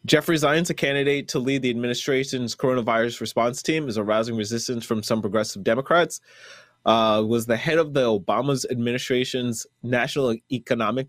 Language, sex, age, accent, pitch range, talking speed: English, male, 20-39, American, 110-130 Hz, 150 wpm